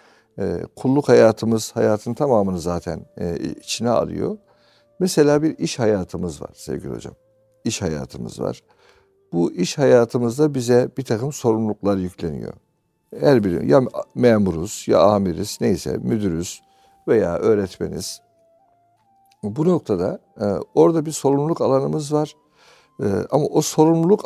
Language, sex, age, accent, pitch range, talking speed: Turkish, male, 60-79, native, 105-170 Hz, 120 wpm